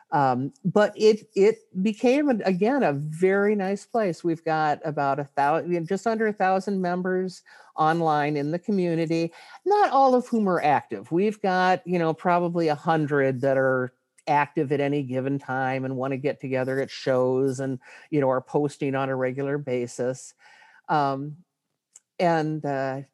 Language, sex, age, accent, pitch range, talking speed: English, male, 50-69, American, 140-195 Hz, 160 wpm